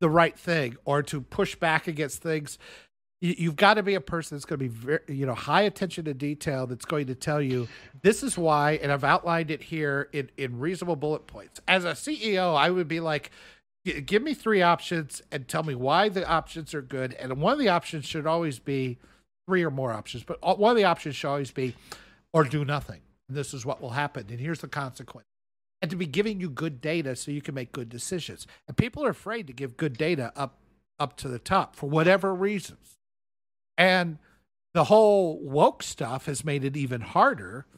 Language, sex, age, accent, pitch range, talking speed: English, male, 50-69, American, 130-170 Hz, 215 wpm